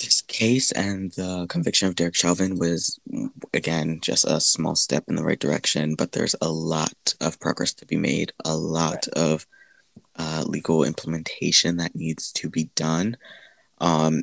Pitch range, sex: 80-100 Hz, male